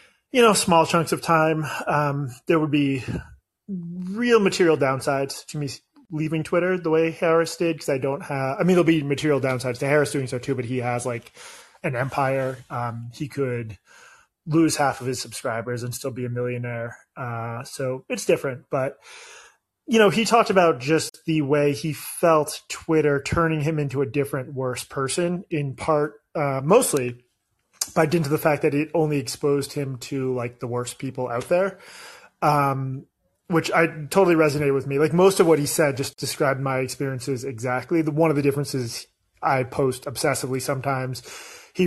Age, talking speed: 30-49, 180 wpm